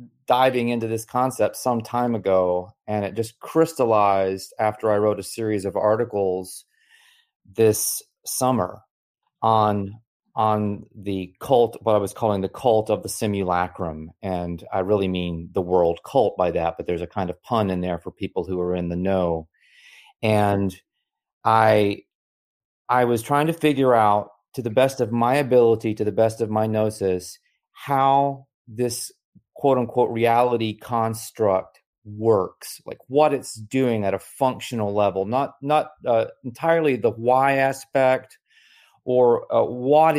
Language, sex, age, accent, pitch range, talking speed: English, male, 30-49, American, 100-120 Hz, 150 wpm